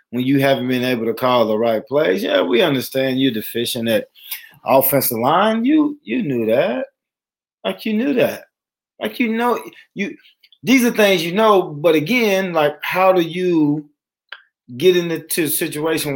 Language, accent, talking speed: English, American, 165 wpm